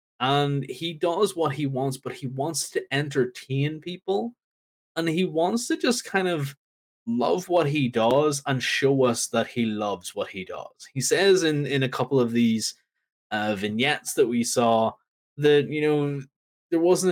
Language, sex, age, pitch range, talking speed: English, male, 20-39, 115-150 Hz, 175 wpm